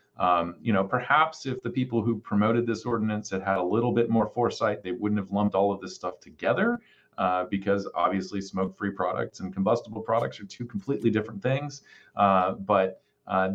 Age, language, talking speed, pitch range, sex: 40-59, English, 190 wpm, 95-110 Hz, male